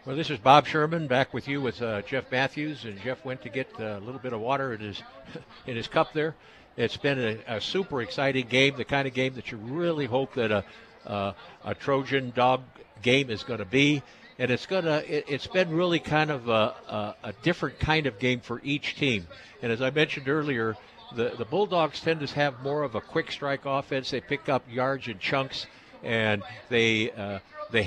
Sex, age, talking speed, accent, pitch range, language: male, 60-79, 220 wpm, American, 115-145 Hz, English